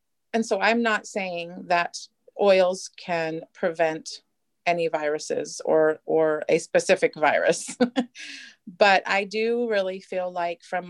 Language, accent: English, American